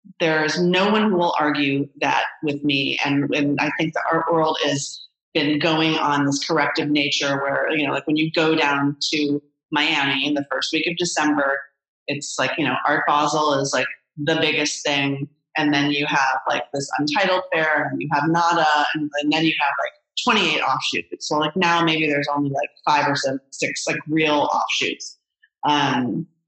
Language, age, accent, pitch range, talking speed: English, 30-49, American, 145-170 Hz, 195 wpm